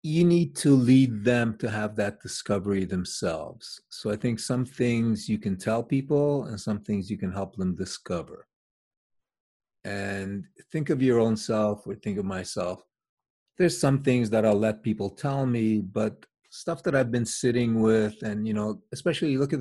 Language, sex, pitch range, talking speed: English, male, 105-125 Hz, 180 wpm